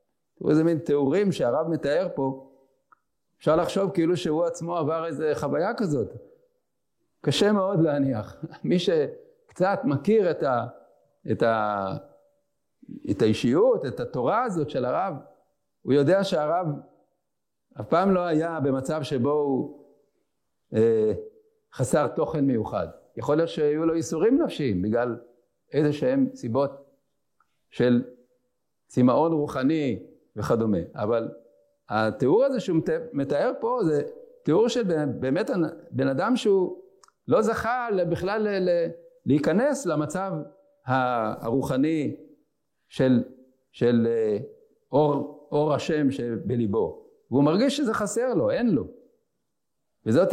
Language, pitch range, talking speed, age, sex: English, 135-210 Hz, 110 wpm, 50-69, male